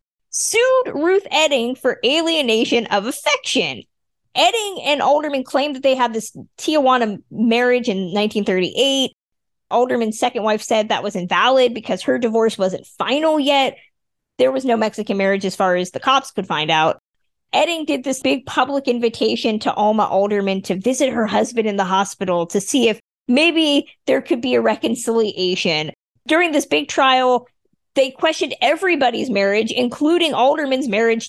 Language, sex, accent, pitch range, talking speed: English, female, American, 215-290 Hz, 155 wpm